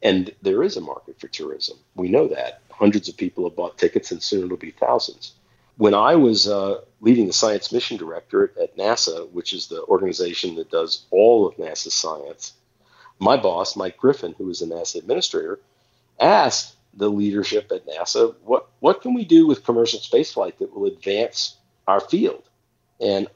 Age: 50-69